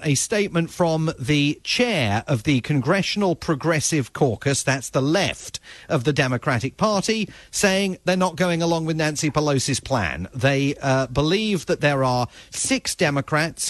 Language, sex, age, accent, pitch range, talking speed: English, male, 40-59, British, 130-170 Hz, 150 wpm